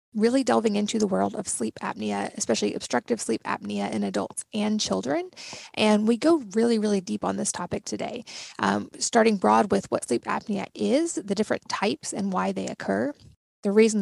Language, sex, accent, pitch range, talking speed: English, female, American, 190-230 Hz, 185 wpm